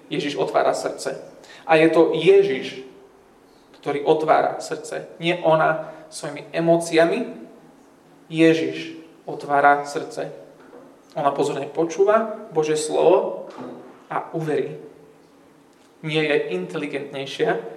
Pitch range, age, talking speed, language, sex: 145-170 Hz, 30-49, 90 wpm, Slovak, male